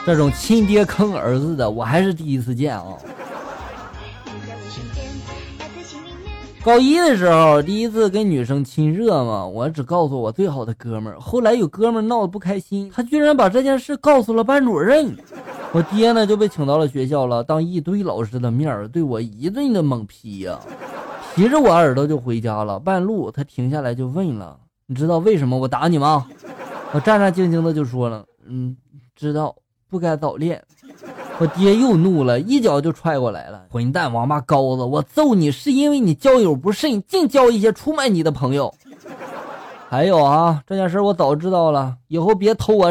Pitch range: 130-215 Hz